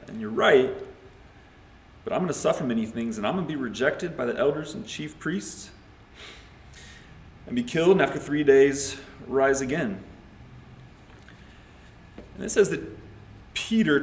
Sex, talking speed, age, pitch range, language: male, 145 wpm, 30-49, 115-165 Hz, English